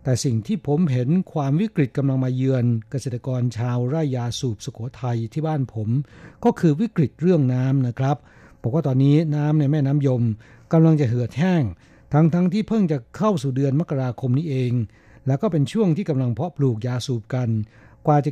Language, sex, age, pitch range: Thai, male, 60-79, 120-150 Hz